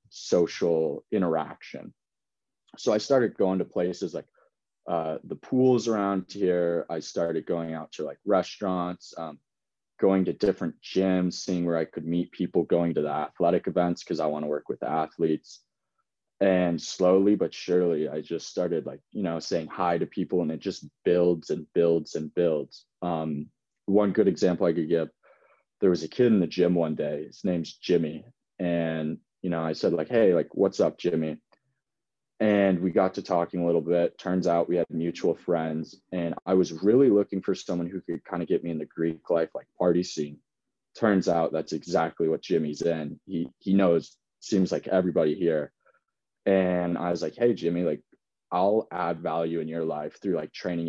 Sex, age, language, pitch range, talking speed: male, 20-39, English, 80-95 Hz, 190 wpm